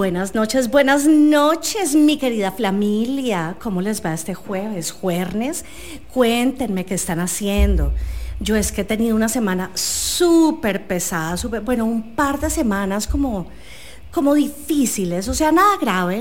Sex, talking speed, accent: female, 140 wpm, Colombian